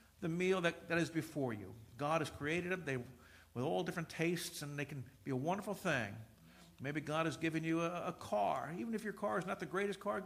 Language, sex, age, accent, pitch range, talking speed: English, male, 50-69, American, 145-200 Hz, 235 wpm